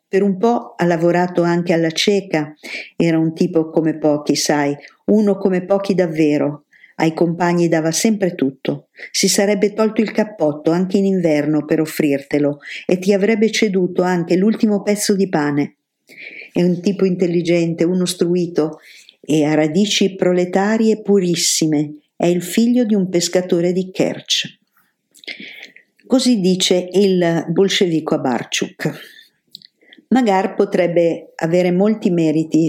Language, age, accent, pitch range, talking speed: Italian, 50-69, native, 165-200 Hz, 130 wpm